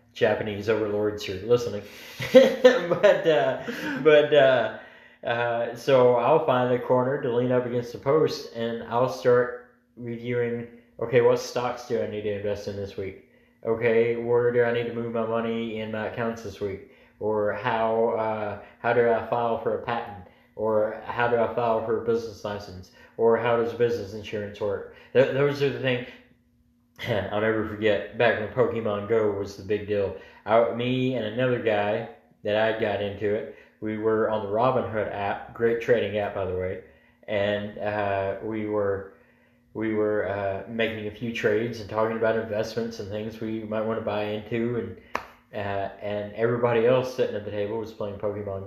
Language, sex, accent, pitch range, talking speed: English, male, American, 105-120 Hz, 180 wpm